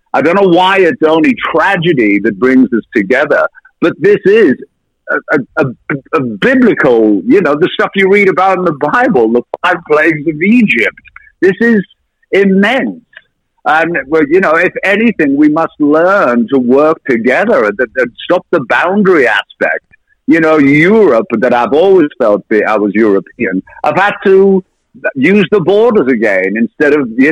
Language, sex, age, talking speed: English, male, 60-79, 165 wpm